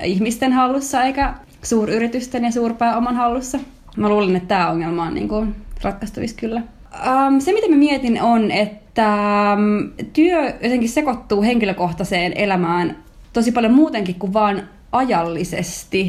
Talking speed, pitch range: 125 wpm, 185-245 Hz